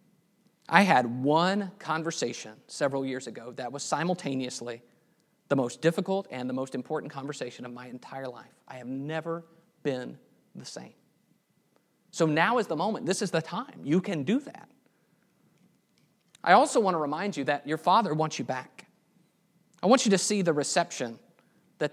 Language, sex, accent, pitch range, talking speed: English, male, American, 140-185 Hz, 165 wpm